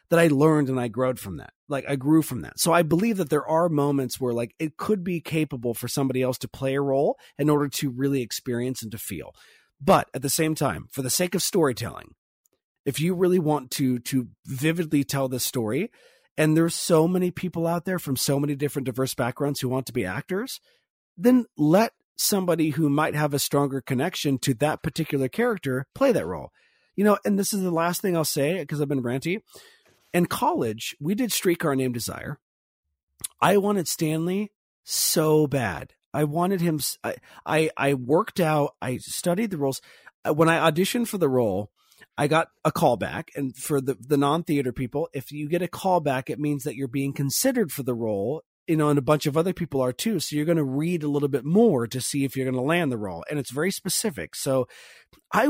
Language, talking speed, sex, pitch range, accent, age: English, 215 wpm, male, 135-170 Hz, American, 30-49